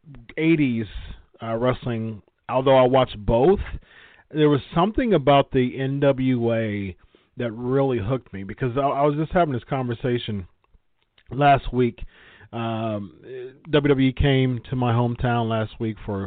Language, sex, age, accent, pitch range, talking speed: English, male, 40-59, American, 115-140 Hz, 135 wpm